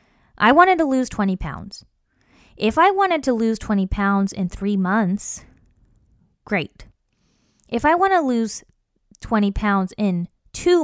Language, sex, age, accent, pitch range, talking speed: English, female, 20-39, American, 165-220 Hz, 145 wpm